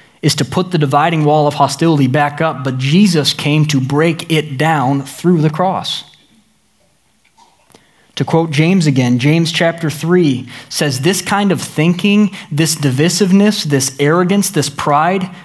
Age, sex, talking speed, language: 20-39, male, 150 wpm, English